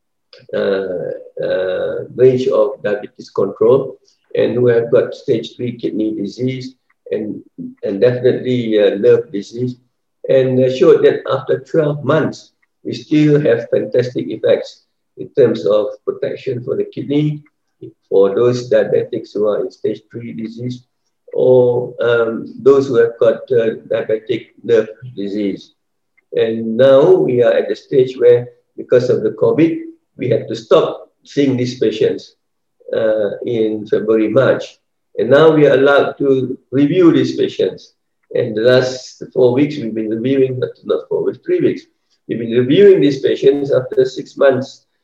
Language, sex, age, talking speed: English, male, 50-69, 145 wpm